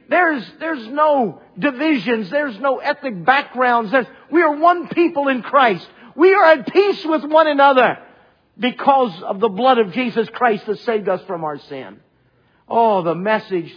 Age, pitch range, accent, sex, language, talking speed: 50-69, 145-230 Hz, American, male, English, 165 wpm